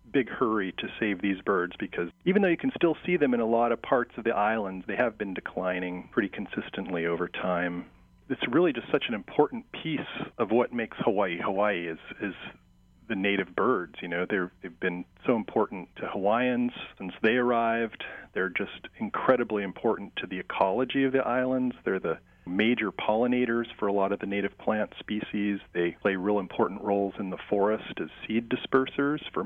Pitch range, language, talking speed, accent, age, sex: 95-120 Hz, English, 190 wpm, American, 40-59, male